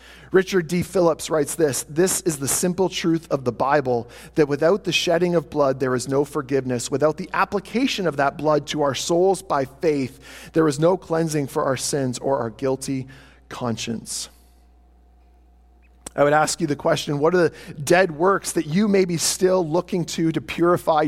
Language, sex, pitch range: English, male, 140-195 Hz